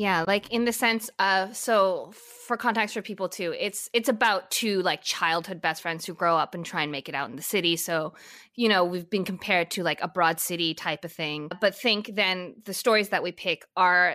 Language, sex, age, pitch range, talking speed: English, female, 20-39, 180-240 Hz, 235 wpm